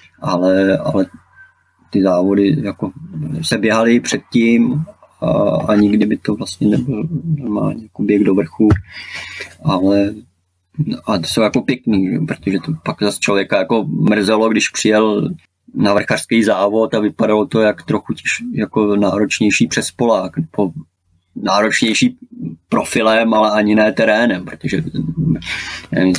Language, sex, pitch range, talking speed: Czech, male, 95-115 Hz, 130 wpm